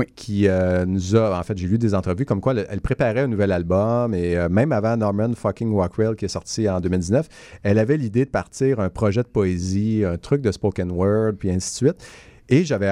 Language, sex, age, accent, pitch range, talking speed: French, male, 40-59, Canadian, 90-115 Hz, 230 wpm